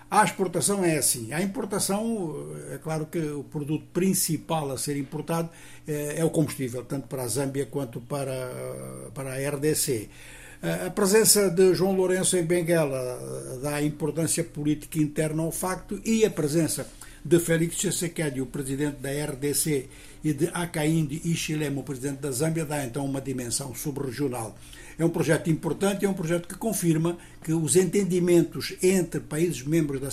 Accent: Brazilian